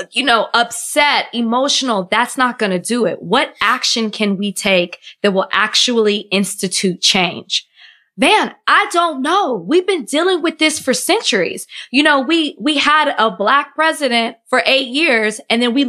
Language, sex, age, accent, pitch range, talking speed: English, female, 20-39, American, 215-280 Hz, 170 wpm